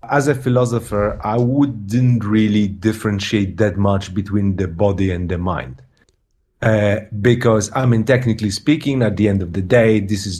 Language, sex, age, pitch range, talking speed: Danish, male, 40-59, 100-125 Hz, 165 wpm